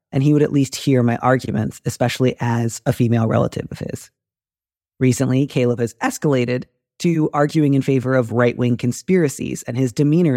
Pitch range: 120-135 Hz